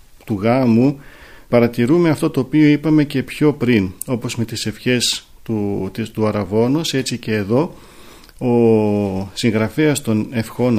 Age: 40-59